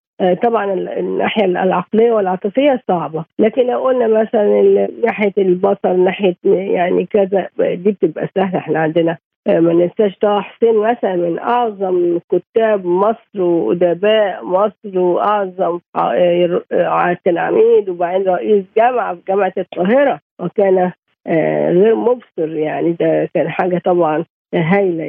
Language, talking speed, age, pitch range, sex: Arabic, 115 wpm, 50-69, 175-225 Hz, female